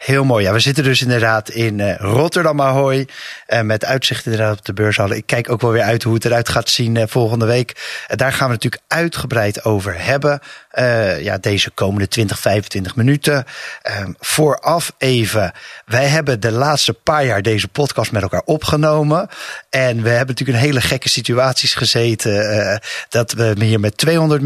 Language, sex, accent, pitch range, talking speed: Dutch, male, Dutch, 110-135 Hz, 175 wpm